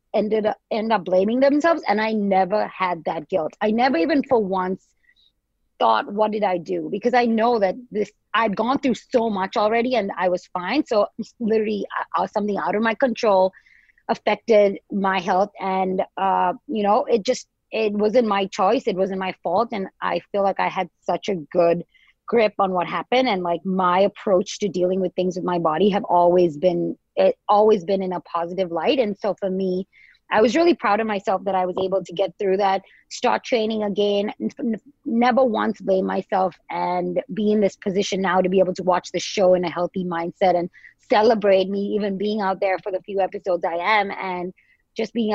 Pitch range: 185-215 Hz